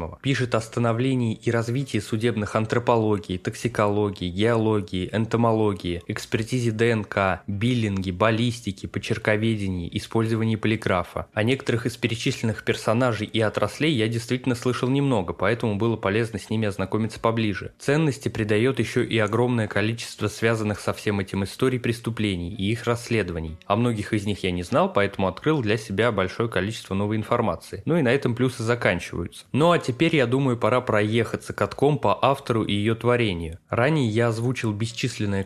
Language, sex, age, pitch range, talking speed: Russian, male, 20-39, 105-120 Hz, 145 wpm